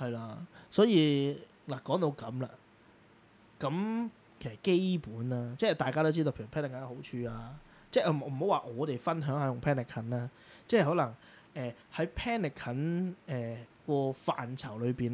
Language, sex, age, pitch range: Chinese, male, 20-39, 120-155 Hz